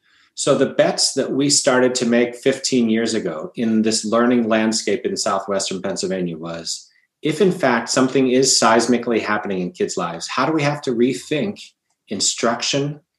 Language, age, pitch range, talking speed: English, 30-49, 110-135 Hz, 165 wpm